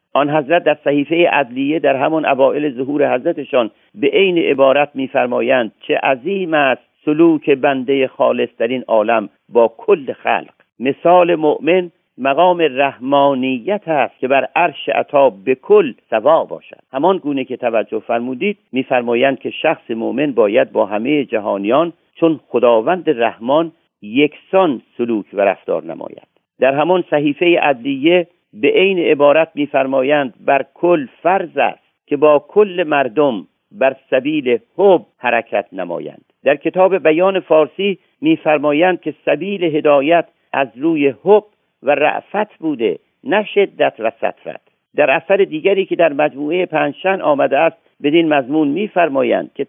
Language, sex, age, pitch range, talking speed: Persian, male, 50-69, 140-180 Hz, 135 wpm